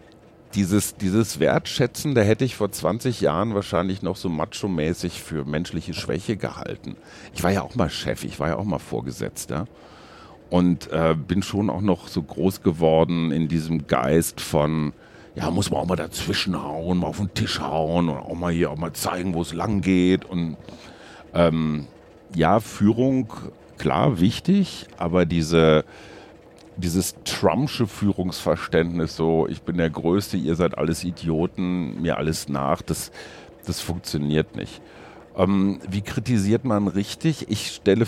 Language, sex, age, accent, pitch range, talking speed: German, male, 50-69, German, 80-105 Hz, 155 wpm